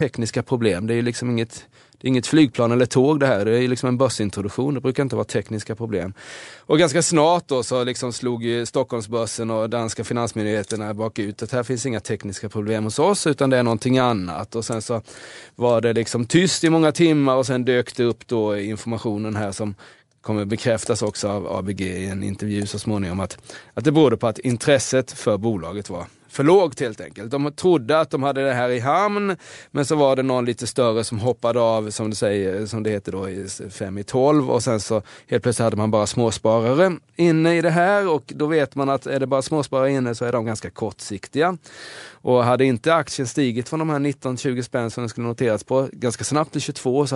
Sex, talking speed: male, 215 wpm